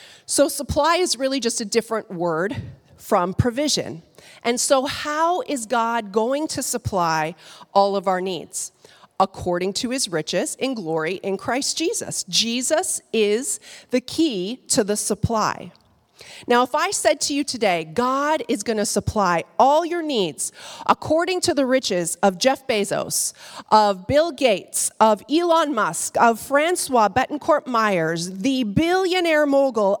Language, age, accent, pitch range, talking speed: English, 40-59, American, 195-270 Hz, 145 wpm